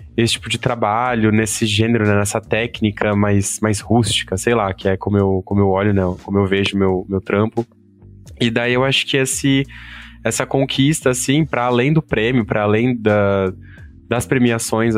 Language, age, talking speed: Portuguese, 20-39, 185 wpm